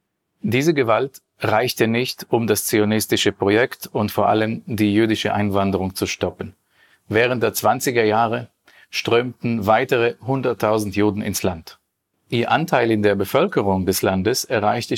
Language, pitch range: German, 100-115 Hz